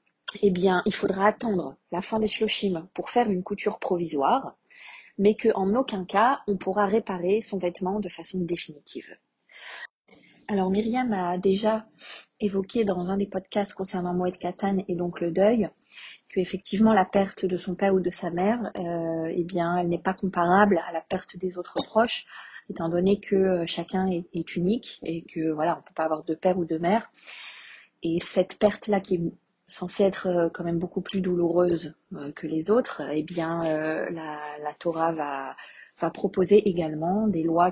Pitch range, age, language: 170-200 Hz, 30-49, French